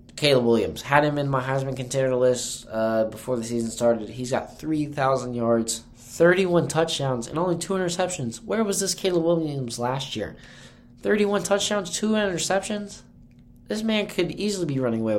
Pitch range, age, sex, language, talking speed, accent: 110-135 Hz, 20-39, male, English, 165 wpm, American